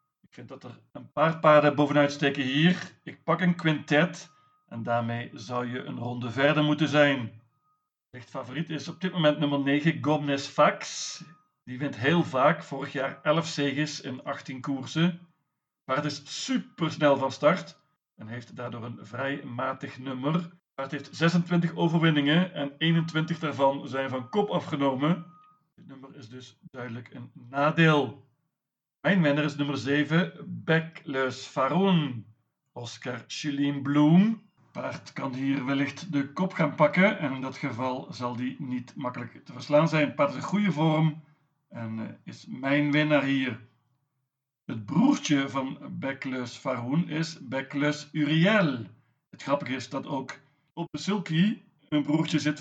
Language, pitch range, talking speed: Dutch, 135-160 Hz, 155 wpm